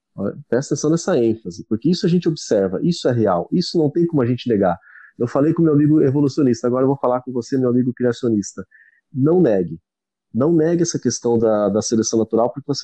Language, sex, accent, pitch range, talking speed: Portuguese, male, Brazilian, 115-145 Hz, 215 wpm